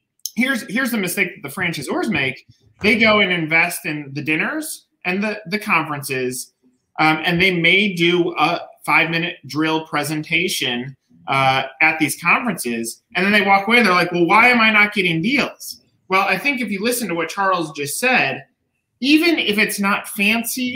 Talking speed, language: 185 wpm, English